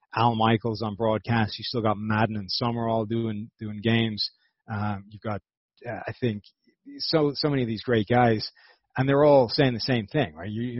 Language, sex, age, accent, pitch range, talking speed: English, male, 30-49, American, 105-120 Hz, 205 wpm